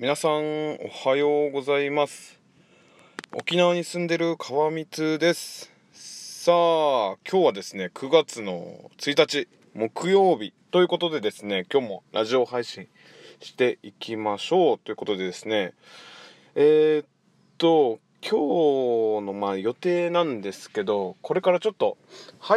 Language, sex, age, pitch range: Japanese, male, 20-39, 125-185 Hz